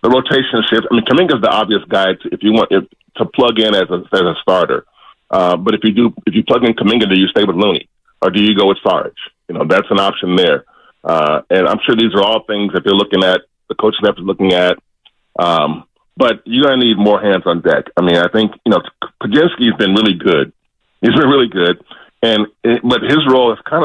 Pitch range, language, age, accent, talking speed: 100-115 Hz, English, 40-59, American, 245 wpm